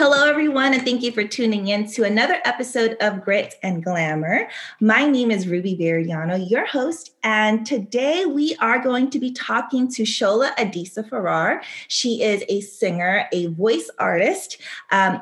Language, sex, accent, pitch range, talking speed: English, female, American, 190-245 Hz, 165 wpm